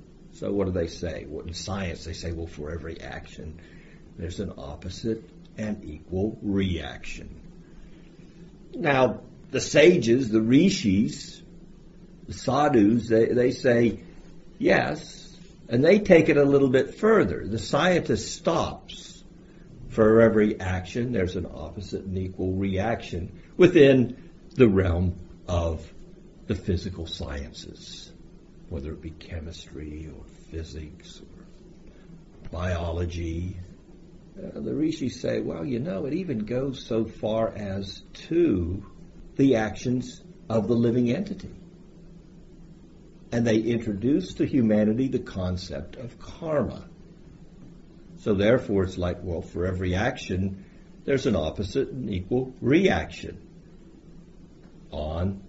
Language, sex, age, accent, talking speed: English, male, 60-79, American, 115 wpm